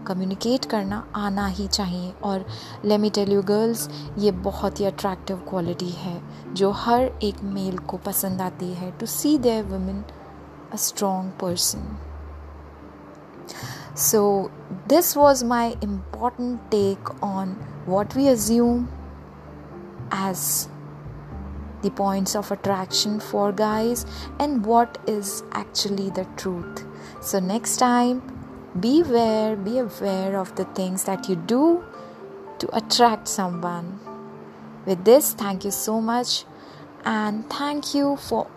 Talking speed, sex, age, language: 125 wpm, female, 30-49, Hindi